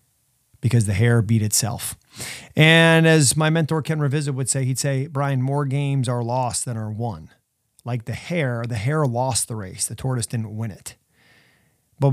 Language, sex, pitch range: English, male, 115-135 Hz